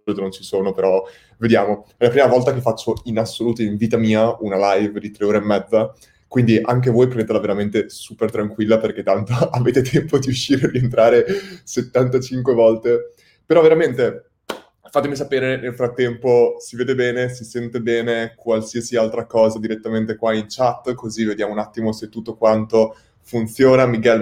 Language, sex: Italian, male